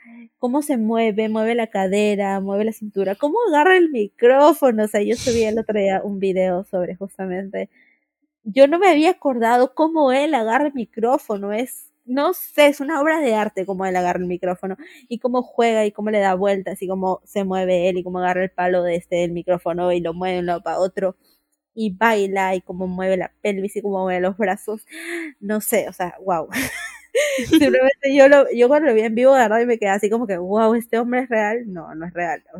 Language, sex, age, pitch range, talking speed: Spanish, female, 20-39, 190-250 Hz, 225 wpm